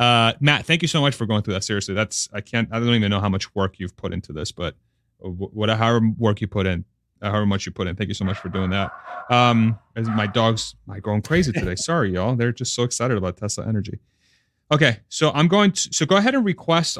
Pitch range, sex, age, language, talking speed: 105-125 Hz, male, 30-49, English, 250 wpm